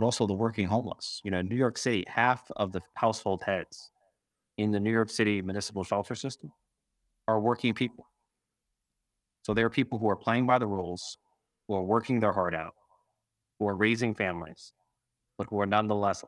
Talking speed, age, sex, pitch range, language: 180 wpm, 30-49, male, 95-115 Hz, English